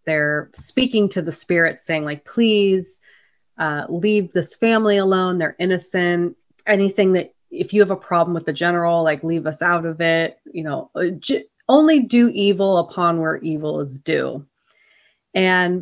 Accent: American